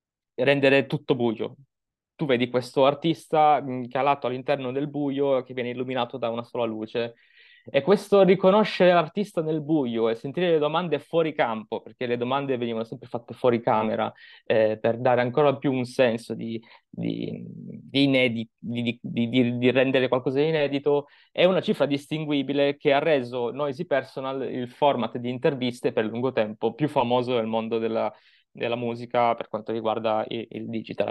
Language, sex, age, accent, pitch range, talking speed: Italian, male, 20-39, native, 115-145 Hz, 170 wpm